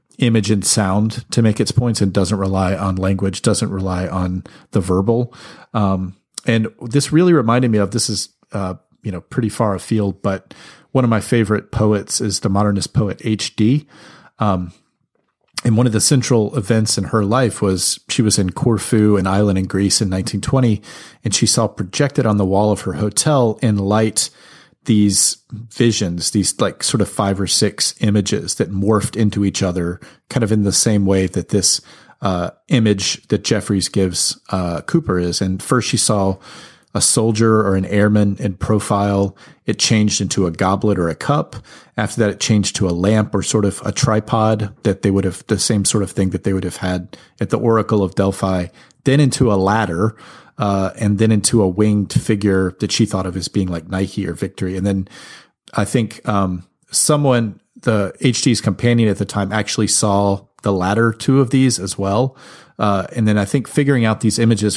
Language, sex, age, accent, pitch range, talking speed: English, male, 40-59, American, 95-115 Hz, 195 wpm